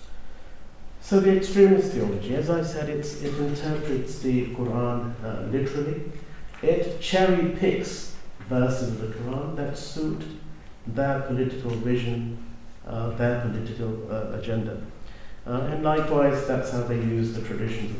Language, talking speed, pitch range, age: English, 130 wpm, 110-145 Hz, 50-69